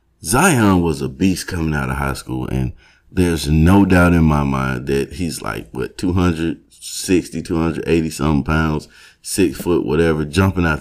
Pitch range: 75-90 Hz